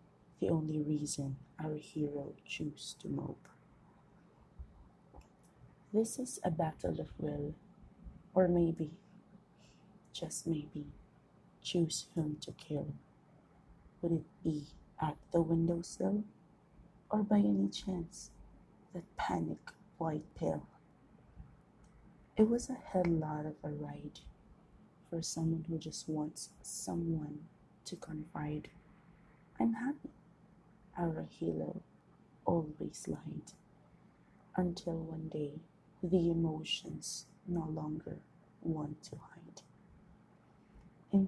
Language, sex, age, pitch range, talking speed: Filipino, female, 30-49, 155-185 Hz, 100 wpm